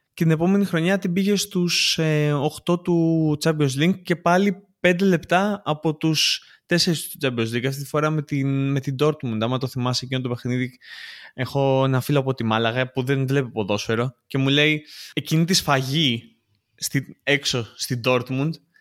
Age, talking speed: 20-39, 175 wpm